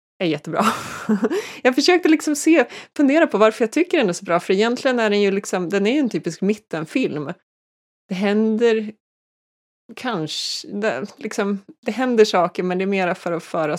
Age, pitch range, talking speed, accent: 20-39, 160-205 Hz, 180 wpm, native